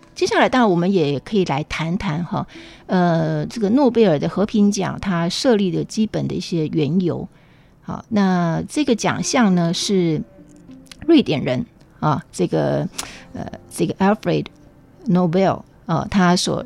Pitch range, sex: 165-220 Hz, female